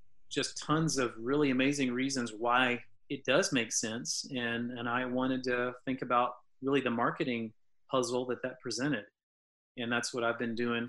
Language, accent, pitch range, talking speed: English, American, 120-130 Hz, 170 wpm